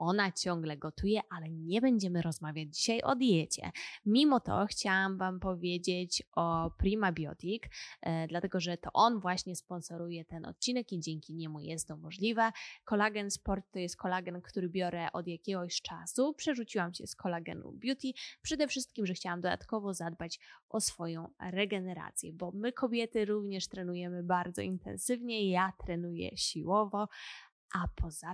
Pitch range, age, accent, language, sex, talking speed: 175-220 Hz, 20-39, native, Polish, female, 145 wpm